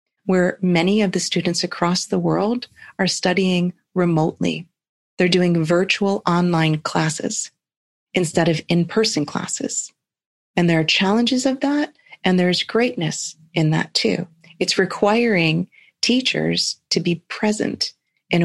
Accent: American